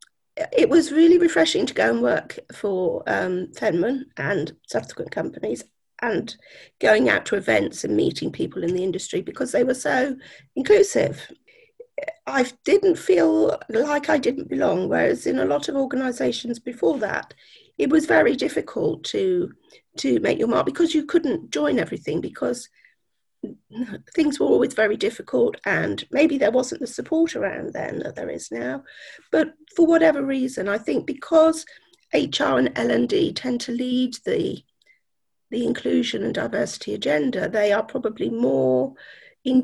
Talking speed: 155 wpm